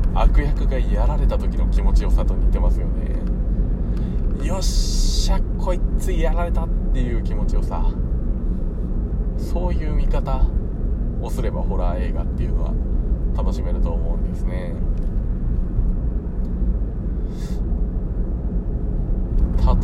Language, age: Japanese, 20-39